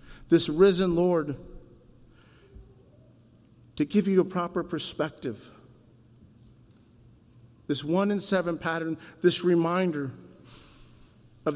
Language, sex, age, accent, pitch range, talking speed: English, male, 50-69, American, 135-180 Hz, 90 wpm